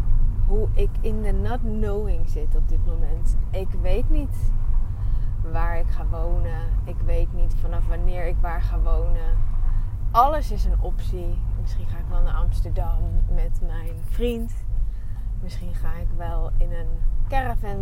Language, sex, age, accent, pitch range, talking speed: Dutch, female, 20-39, Dutch, 95-105 Hz, 155 wpm